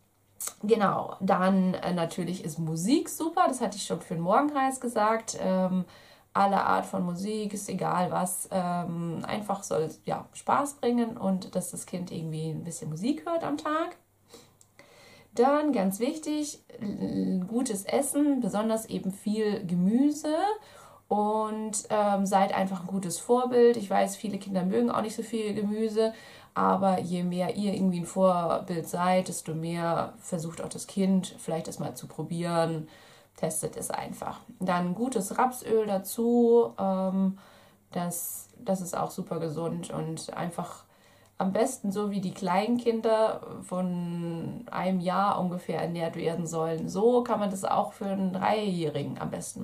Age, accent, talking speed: 30-49, German, 145 wpm